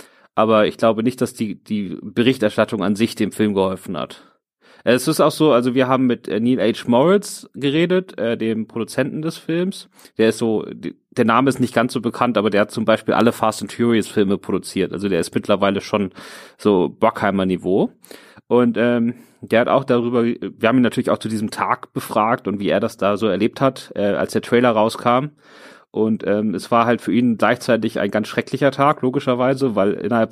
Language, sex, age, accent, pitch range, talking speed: German, male, 30-49, German, 110-135 Hz, 205 wpm